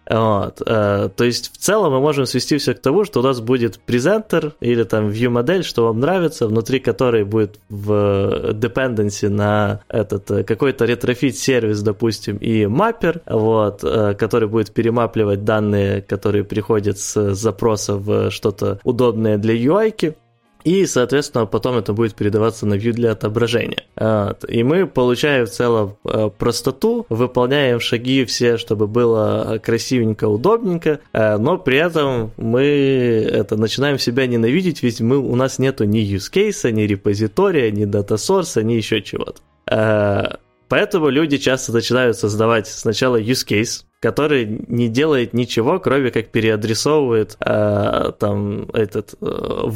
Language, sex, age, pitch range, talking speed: Ukrainian, male, 20-39, 110-130 Hz, 145 wpm